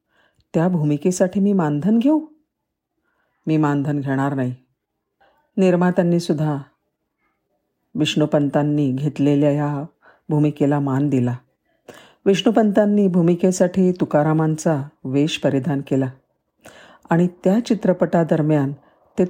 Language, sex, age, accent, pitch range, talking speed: Marathi, female, 50-69, native, 150-185 Hz, 65 wpm